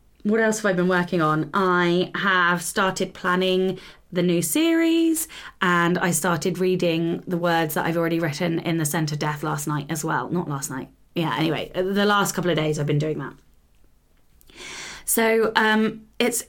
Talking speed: 180 wpm